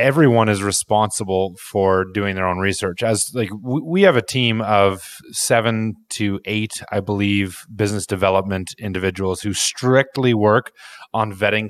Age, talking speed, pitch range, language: 30-49, 145 wpm, 95-120 Hz, English